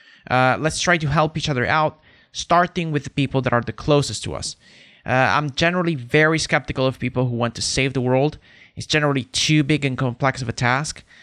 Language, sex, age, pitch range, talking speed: English, male, 20-39, 125-160 Hz, 215 wpm